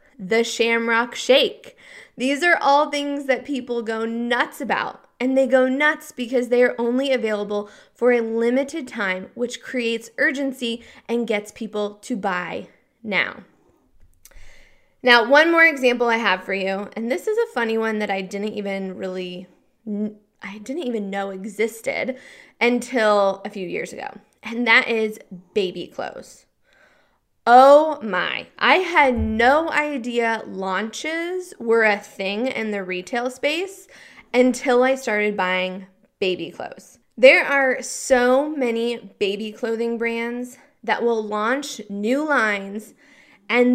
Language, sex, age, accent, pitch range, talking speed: English, female, 20-39, American, 215-270 Hz, 140 wpm